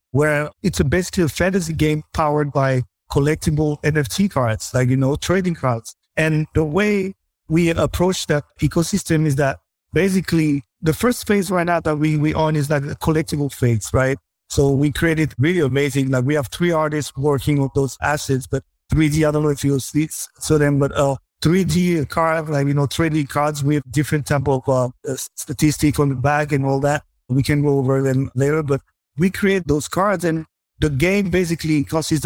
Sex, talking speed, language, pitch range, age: male, 195 wpm, English, 140-160 Hz, 50-69